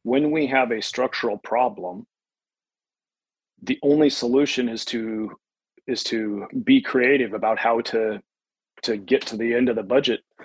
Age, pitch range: 30-49, 110-130 Hz